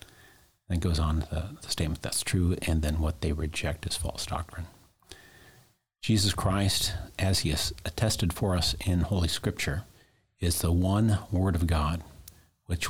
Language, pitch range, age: English, 80-100 Hz, 50-69